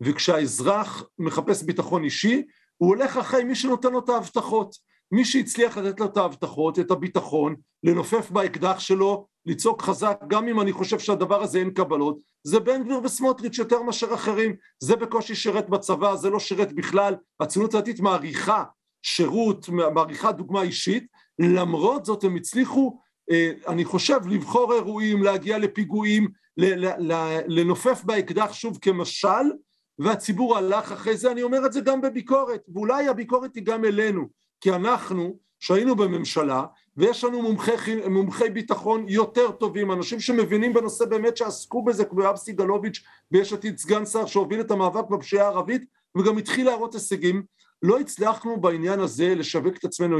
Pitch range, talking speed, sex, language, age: 175-225 Hz, 145 wpm, male, Hebrew, 50-69